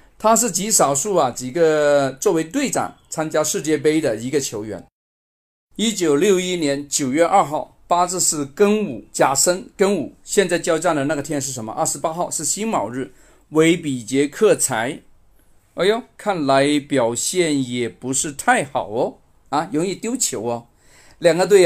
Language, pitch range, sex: Chinese, 130-180 Hz, male